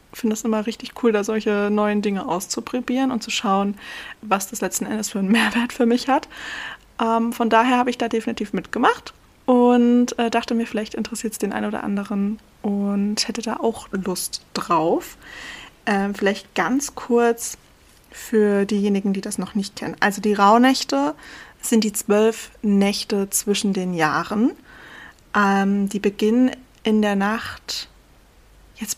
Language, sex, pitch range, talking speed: German, female, 205-250 Hz, 160 wpm